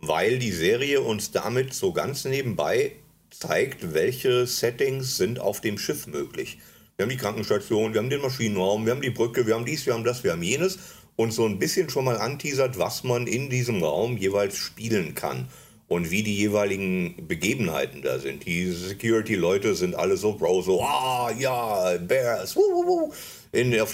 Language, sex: German, male